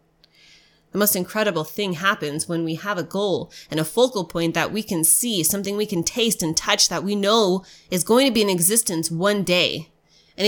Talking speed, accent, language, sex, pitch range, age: 205 wpm, American, English, female, 180-230 Hz, 20-39